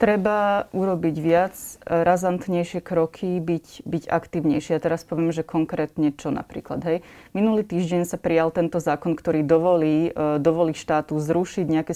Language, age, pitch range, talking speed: Slovak, 20-39, 155-175 Hz, 140 wpm